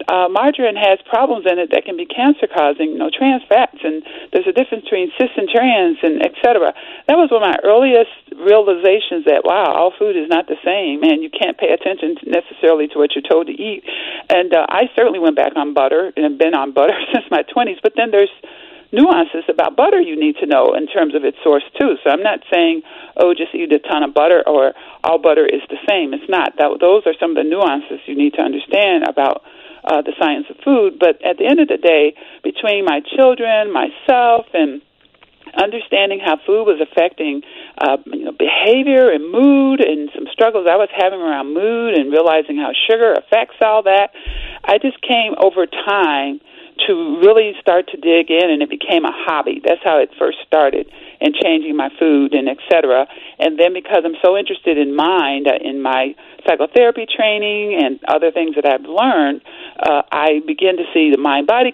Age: 50-69